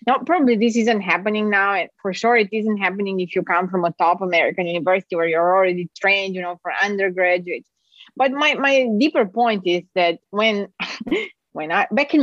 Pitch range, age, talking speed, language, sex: 195-275 Hz, 30-49, 190 wpm, English, female